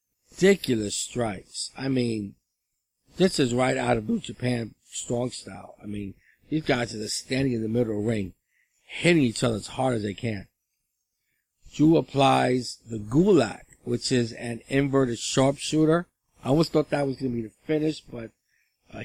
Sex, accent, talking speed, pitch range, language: male, American, 175 wpm, 110-135 Hz, English